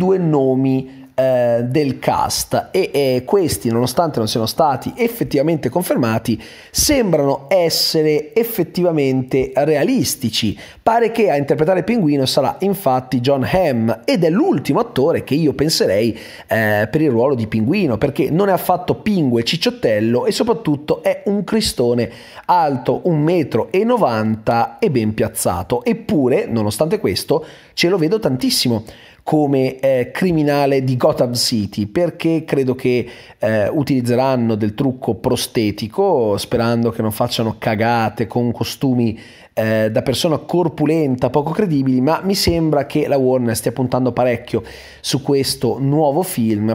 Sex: male